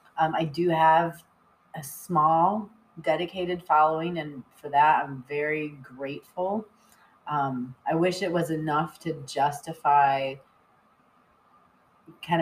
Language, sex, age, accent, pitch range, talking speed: English, female, 30-49, American, 145-170 Hz, 110 wpm